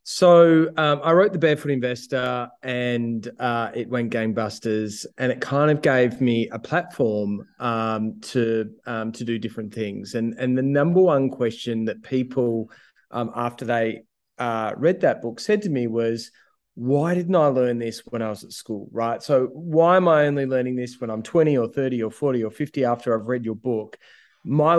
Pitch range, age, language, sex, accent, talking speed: 115-140 Hz, 20-39, English, male, Australian, 190 wpm